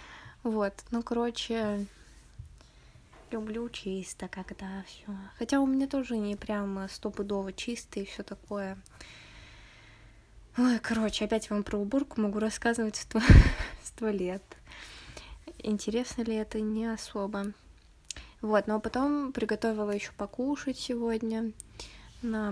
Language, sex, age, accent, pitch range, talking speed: Russian, female, 20-39, native, 205-230 Hz, 115 wpm